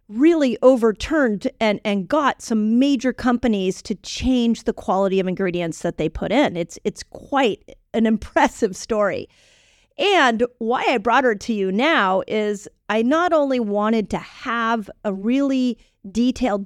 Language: English